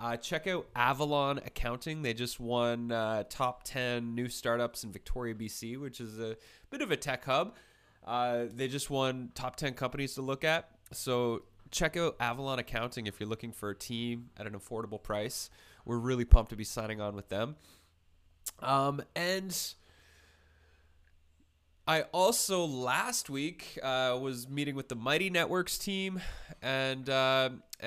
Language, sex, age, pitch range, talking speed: English, male, 20-39, 110-145 Hz, 160 wpm